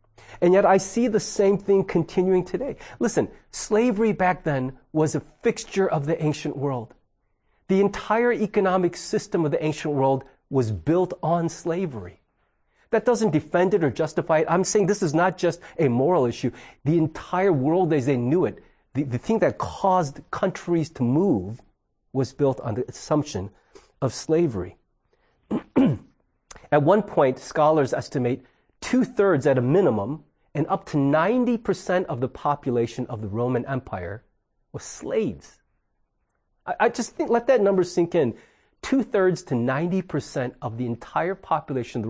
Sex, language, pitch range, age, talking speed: male, English, 130-185 Hz, 40-59, 155 wpm